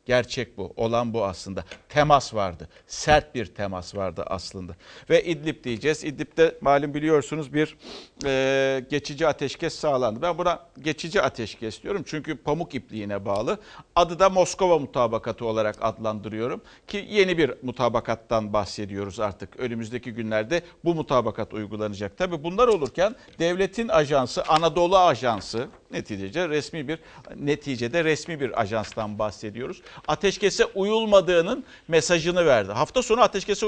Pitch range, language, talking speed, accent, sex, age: 115-175 Hz, Turkish, 125 wpm, native, male, 60-79